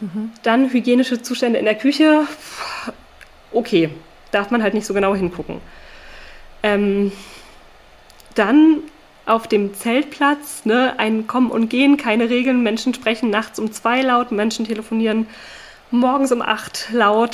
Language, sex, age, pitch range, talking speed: German, female, 20-39, 210-250 Hz, 135 wpm